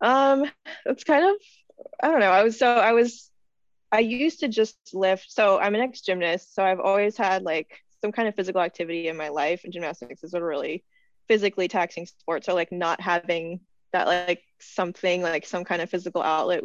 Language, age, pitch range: English, 20-39, 170-200 Hz